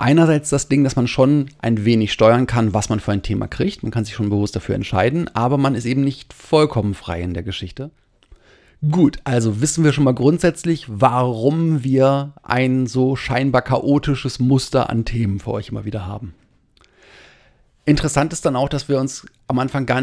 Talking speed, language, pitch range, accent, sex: 190 wpm, German, 110-135 Hz, German, male